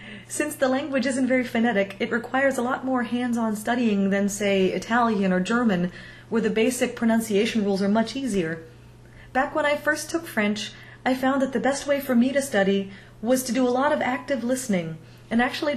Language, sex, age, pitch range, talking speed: English, female, 30-49, 210-255 Hz, 200 wpm